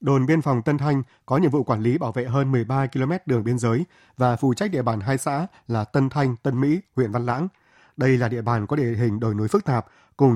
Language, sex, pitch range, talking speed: Vietnamese, male, 120-140 Hz, 260 wpm